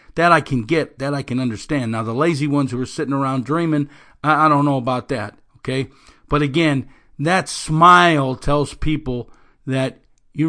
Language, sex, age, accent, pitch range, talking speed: English, male, 50-69, American, 115-145 Hz, 175 wpm